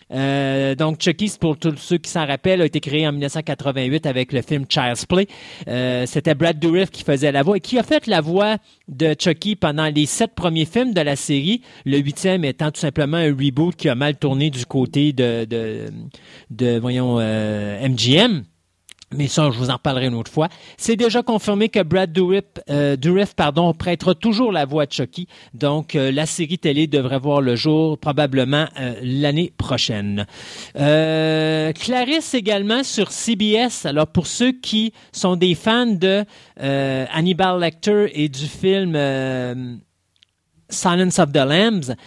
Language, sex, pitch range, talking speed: French, male, 135-185 Hz, 175 wpm